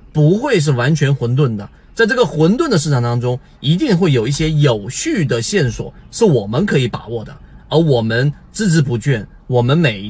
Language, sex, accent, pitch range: Chinese, male, native, 120-155 Hz